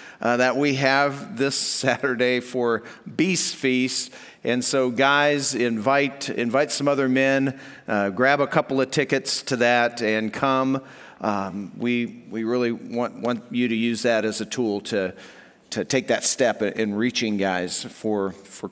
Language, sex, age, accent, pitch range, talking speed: English, male, 50-69, American, 130-180 Hz, 160 wpm